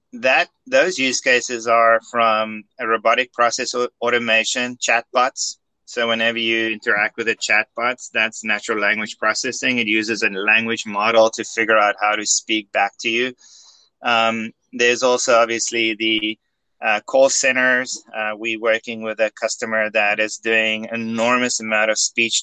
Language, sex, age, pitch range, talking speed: English, male, 20-39, 110-120 Hz, 150 wpm